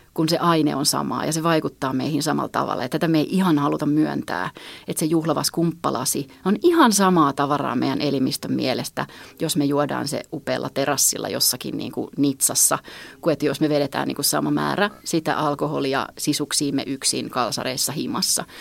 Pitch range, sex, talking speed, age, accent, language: 145-165 Hz, female, 170 wpm, 30-49, native, Finnish